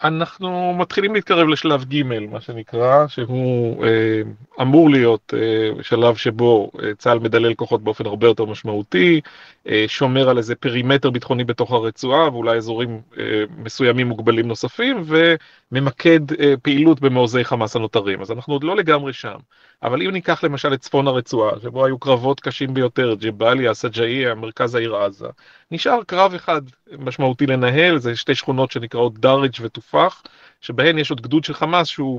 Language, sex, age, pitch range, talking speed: Hebrew, male, 30-49, 120-160 Hz, 150 wpm